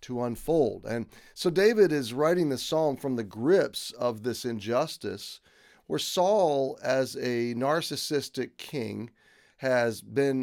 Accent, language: American, English